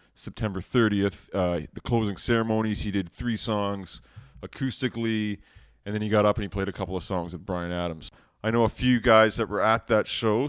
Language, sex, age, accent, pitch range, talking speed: English, male, 30-49, American, 95-115 Hz, 205 wpm